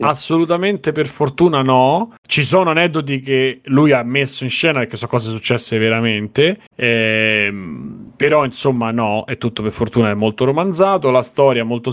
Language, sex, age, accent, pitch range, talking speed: Italian, male, 30-49, native, 110-135 Hz, 165 wpm